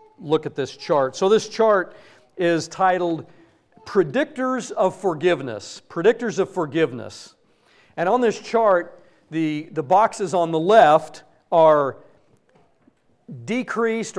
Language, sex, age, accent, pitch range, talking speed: English, male, 50-69, American, 155-210 Hz, 115 wpm